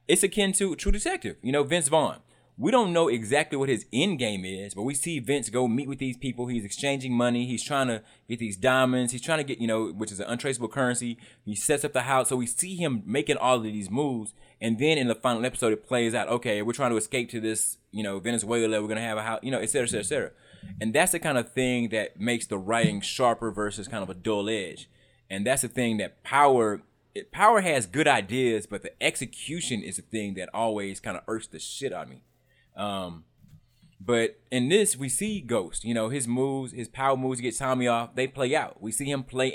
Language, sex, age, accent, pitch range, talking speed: English, male, 20-39, American, 110-135 Hz, 245 wpm